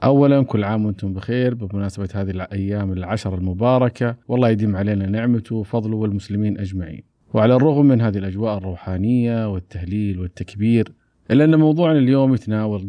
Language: Arabic